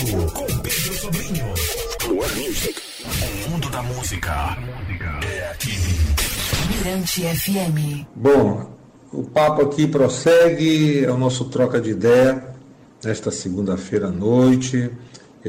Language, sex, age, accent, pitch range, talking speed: Portuguese, male, 50-69, Brazilian, 105-135 Hz, 80 wpm